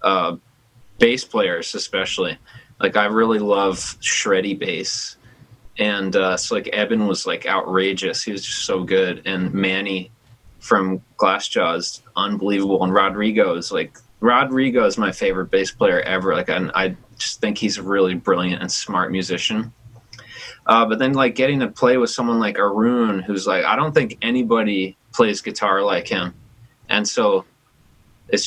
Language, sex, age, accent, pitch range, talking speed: English, male, 20-39, American, 100-125 Hz, 160 wpm